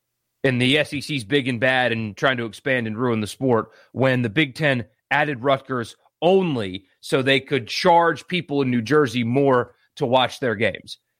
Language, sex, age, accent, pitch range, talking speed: English, male, 30-49, American, 120-160 Hz, 180 wpm